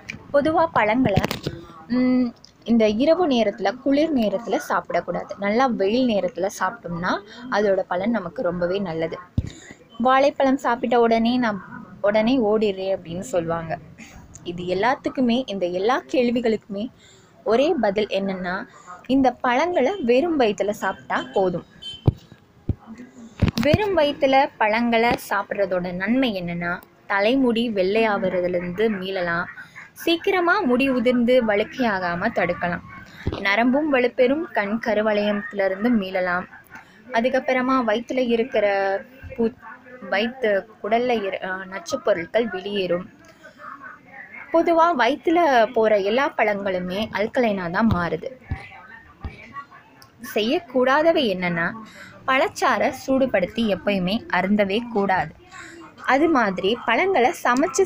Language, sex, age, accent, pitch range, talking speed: Tamil, female, 20-39, native, 195-255 Hz, 90 wpm